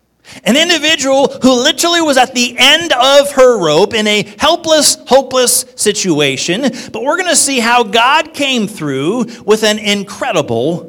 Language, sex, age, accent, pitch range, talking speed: English, male, 50-69, American, 155-255 Hz, 155 wpm